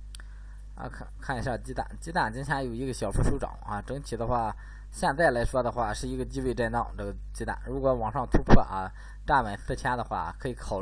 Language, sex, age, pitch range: Chinese, male, 10-29, 95-125 Hz